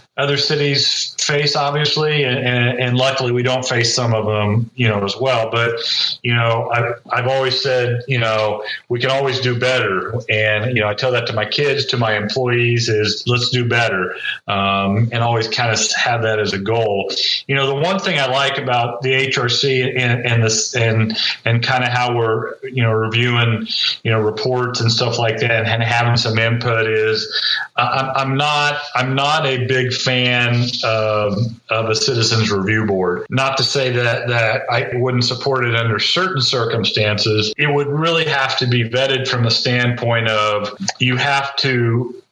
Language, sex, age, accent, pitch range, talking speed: English, male, 40-59, American, 115-130 Hz, 190 wpm